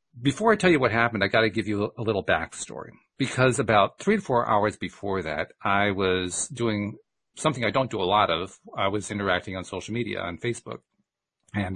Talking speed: 210 wpm